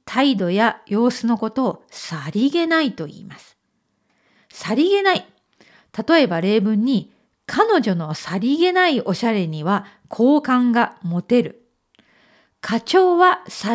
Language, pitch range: Japanese, 195-310 Hz